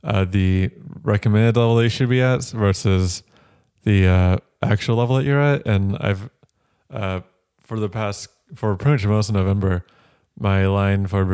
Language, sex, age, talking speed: English, male, 20-39, 165 wpm